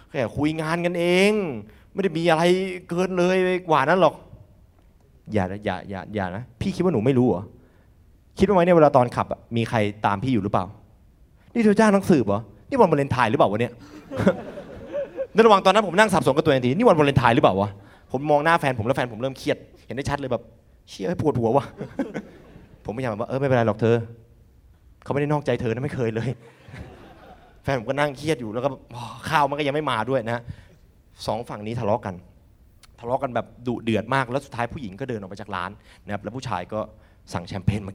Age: 20-39